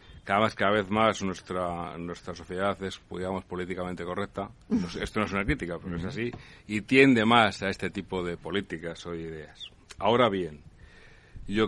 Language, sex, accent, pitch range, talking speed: Spanish, male, Spanish, 90-105 Hz, 165 wpm